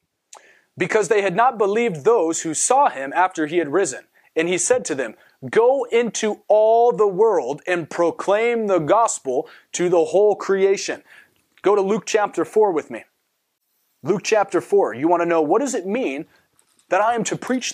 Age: 30-49